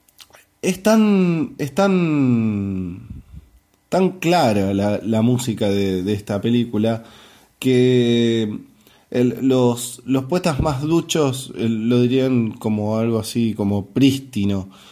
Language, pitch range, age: Spanish, 110-145 Hz, 20-39